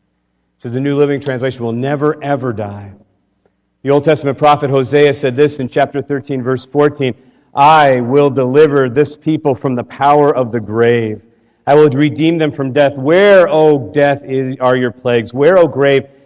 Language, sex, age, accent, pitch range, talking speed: English, male, 40-59, American, 130-155 Hz, 175 wpm